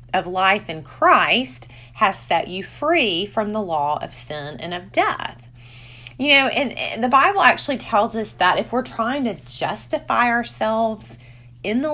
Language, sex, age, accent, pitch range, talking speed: English, female, 30-49, American, 140-235 Hz, 170 wpm